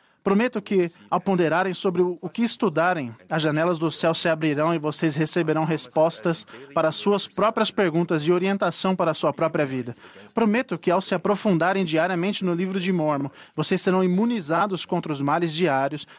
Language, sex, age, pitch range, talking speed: Portuguese, male, 20-39, 155-190 Hz, 165 wpm